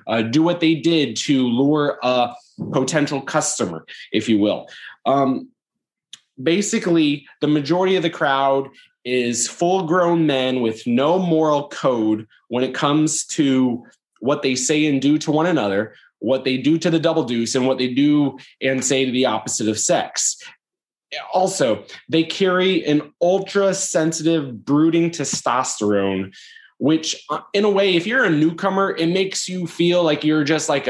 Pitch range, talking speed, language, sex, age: 130-165 Hz, 160 wpm, English, male, 20-39